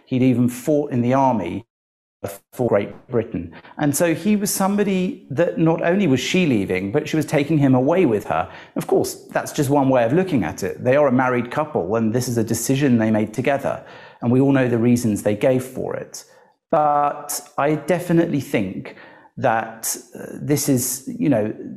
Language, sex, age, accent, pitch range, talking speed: English, male, 40-59, British, 115-145 Hz, 195 wpm